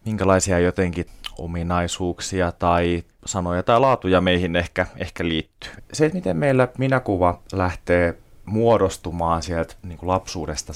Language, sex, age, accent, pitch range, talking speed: Finnish, male, 30-49, native, 85-110 Hz, 110 wpm